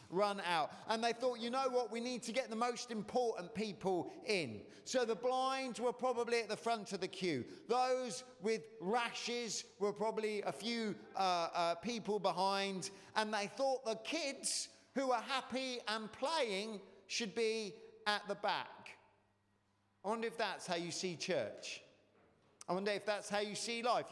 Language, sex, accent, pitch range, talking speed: English, male, British, 175-230 Hz, 175 wpm